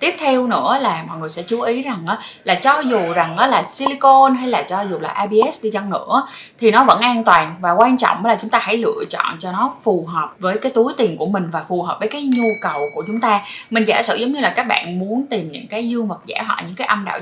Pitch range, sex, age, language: 190-240 Hz, female, 10-29, Vietnamese